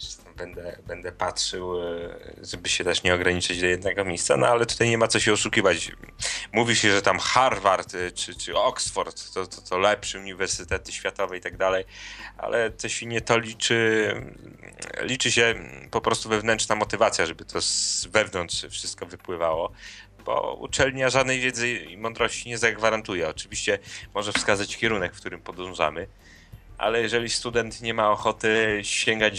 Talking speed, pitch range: 155 wpm, 90-110 Hz